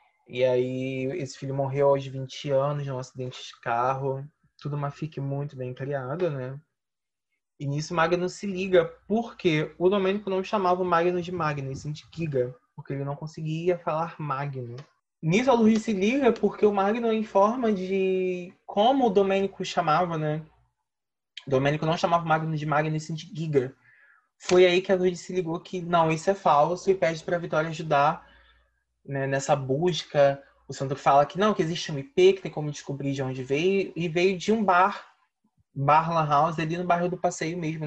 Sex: male